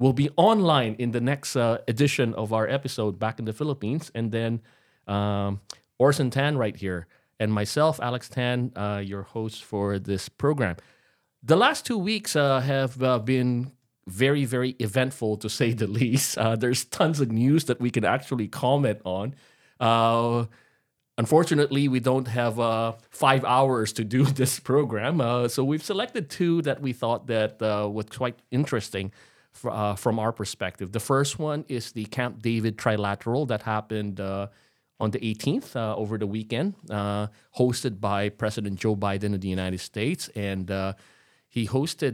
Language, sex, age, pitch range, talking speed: English, male, 30-49, 105-130 Hz, 170 wpm